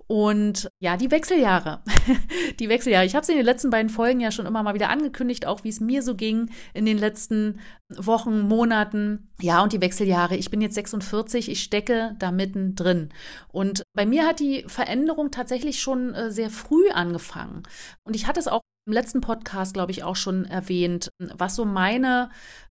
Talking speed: 190 wpm